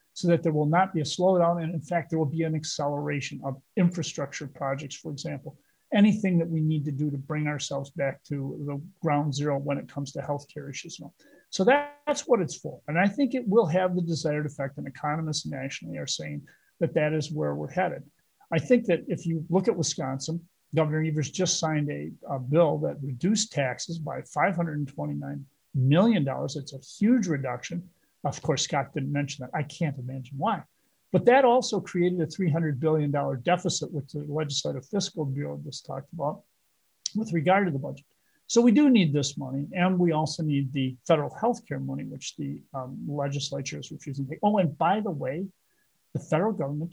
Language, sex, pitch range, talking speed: English, male, 140-180 Hz, 195 wpm